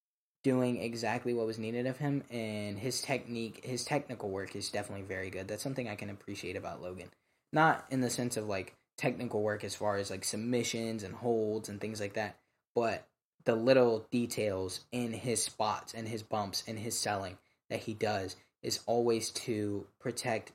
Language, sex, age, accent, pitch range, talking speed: English, male, 10-29, American, 105-125 Hz, 185 wpm